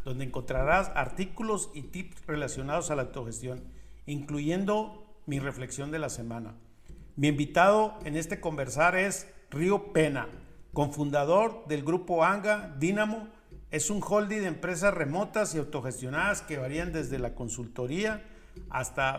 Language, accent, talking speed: Spanish, Mexican, 130 wpm